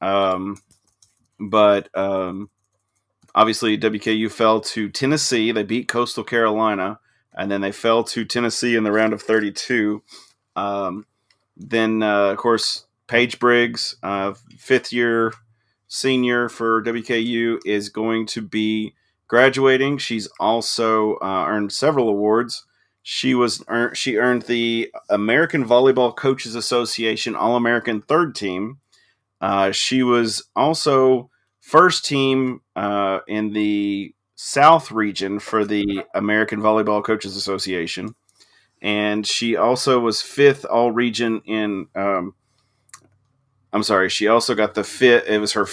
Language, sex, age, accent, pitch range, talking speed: English, male, 30-49, American, 105-120 Hz, 125 wpm